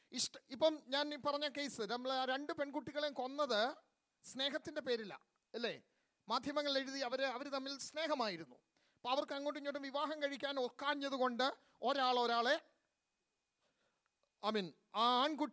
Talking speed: 95 wpm